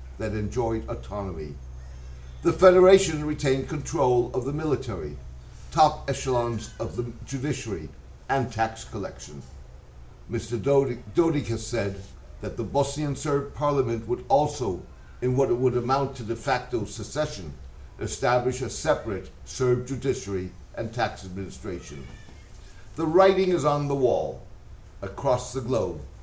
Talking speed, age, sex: 125 wpm, 60-79, male